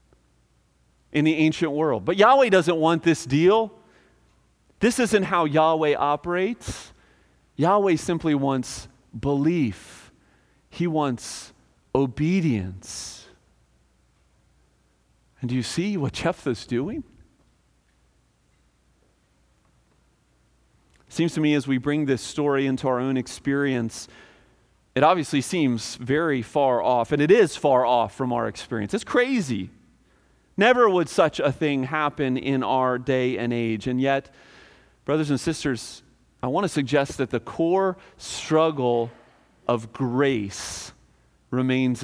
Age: 40-59